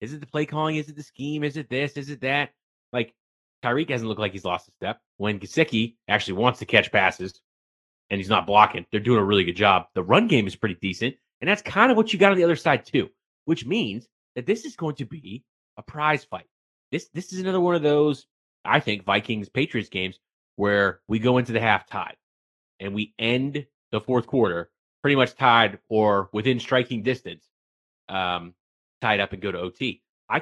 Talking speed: 215 wpm